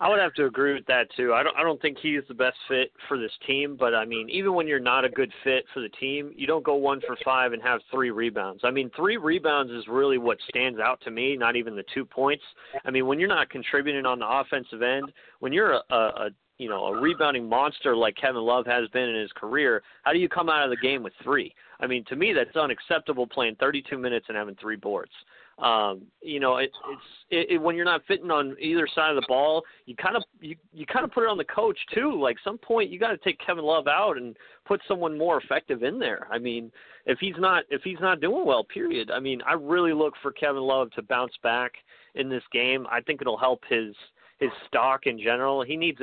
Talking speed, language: 245 wpm, English